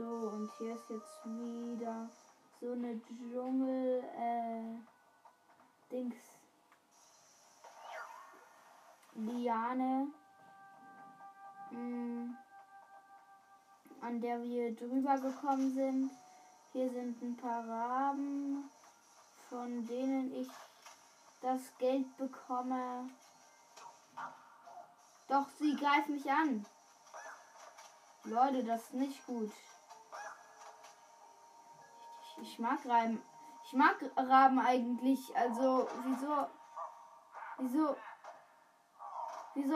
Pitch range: 235-280 Hz